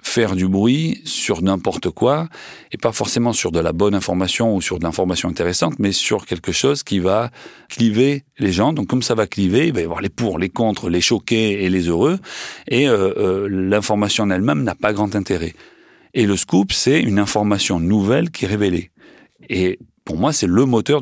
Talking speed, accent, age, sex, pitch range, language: 205 wpm, French, 40-59, male, 85-105 Hz, French